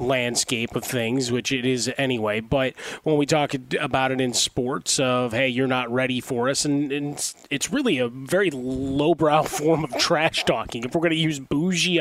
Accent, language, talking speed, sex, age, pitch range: American, English, 195 wpm, male, 30-49, 125-140 Hz